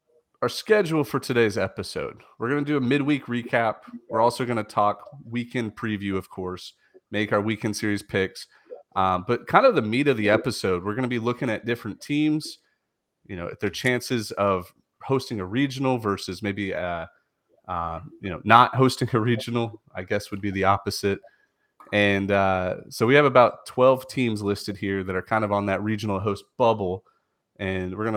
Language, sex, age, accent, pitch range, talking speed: English, male, 30-49, American, 100-125 Hz, 190 wpm